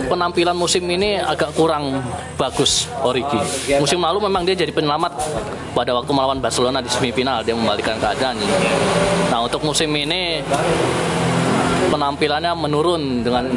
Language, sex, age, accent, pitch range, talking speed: Indonesian, male, 20-39, native, 125-165 Hz, 130 wpm